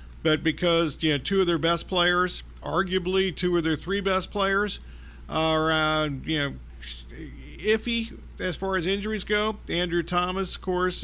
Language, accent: English, American